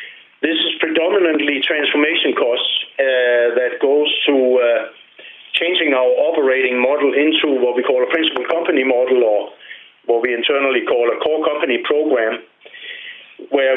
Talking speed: 140 wpm